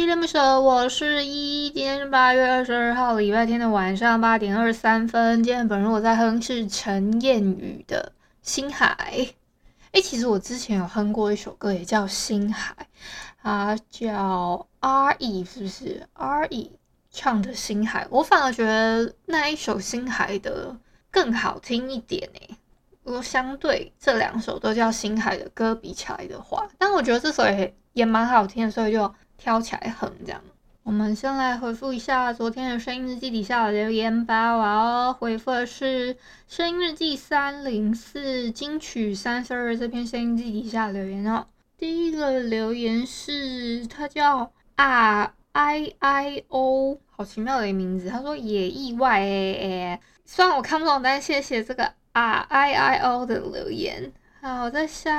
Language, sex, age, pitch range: Chinese, female, 20-39, 220-275 Hz